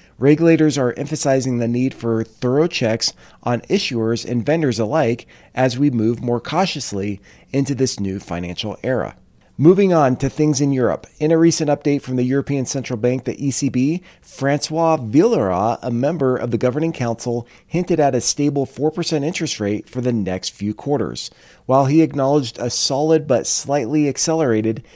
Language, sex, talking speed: English, male, 165 wpm